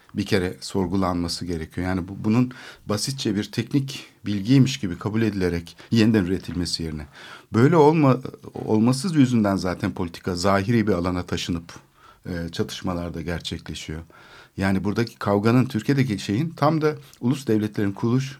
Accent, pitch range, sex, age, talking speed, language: native, 95-130 Hz, male, 60-79, 130 wpm, Turkish